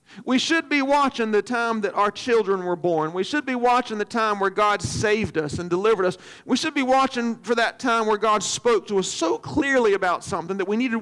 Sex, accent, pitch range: male, American, 205-265 Hz